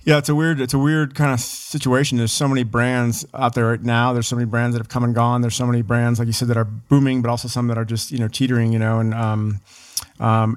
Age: 30-49